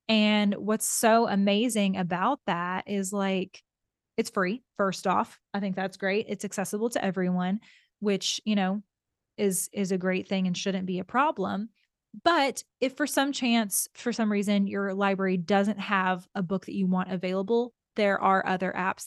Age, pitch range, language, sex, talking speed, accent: 20-39, 190-220 Hz, English, female, 175 wpm, American